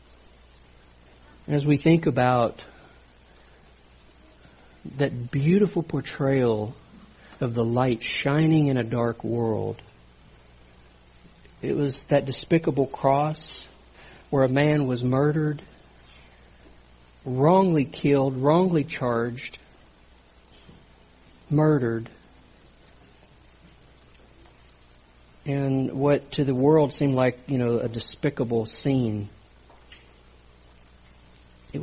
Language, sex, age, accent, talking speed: English, male, 60-79, American, 80 wpm